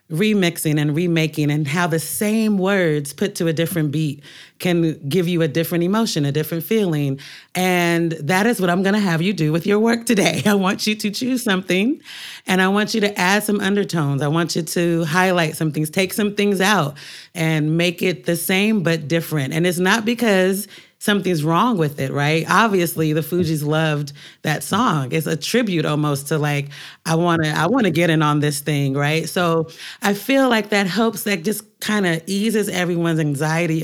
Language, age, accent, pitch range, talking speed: English, 30-49, American, 160-200 Hz, 205 wpm